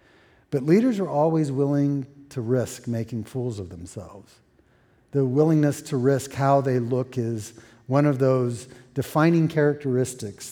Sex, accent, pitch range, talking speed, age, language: male, American, 110-135 Hz, 135 wpm, 50-69, English